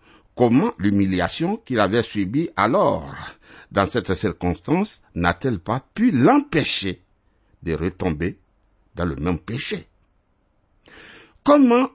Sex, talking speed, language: male, 100 wpm, French